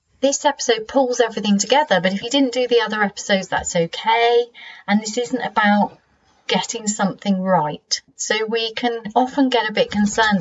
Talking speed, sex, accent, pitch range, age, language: 175 wpm, female, British, 185-235 Hz, 30-49, English